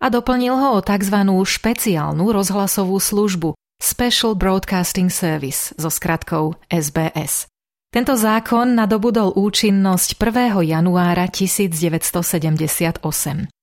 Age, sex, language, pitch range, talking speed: 30-49, female, Slovak, 165-205 Hz, 90 wpm